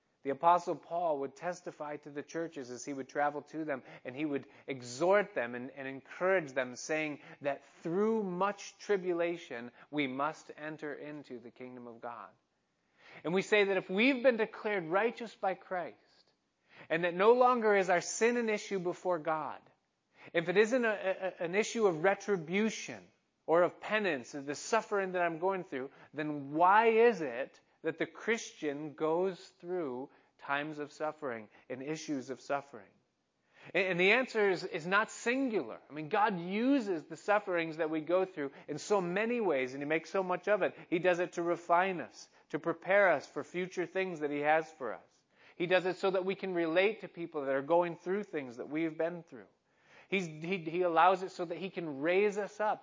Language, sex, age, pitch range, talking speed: English, male, 30-49, 150-190 Hz, 190 wpm